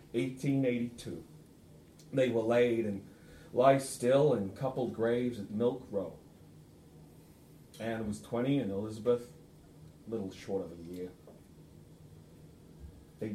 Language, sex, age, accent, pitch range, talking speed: English, male, 40-59, American, 105-140 Hz, 125 wpm